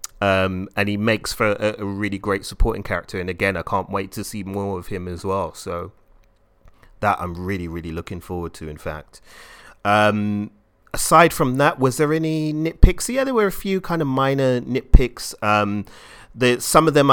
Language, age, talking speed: English, 30-49, 195 wpm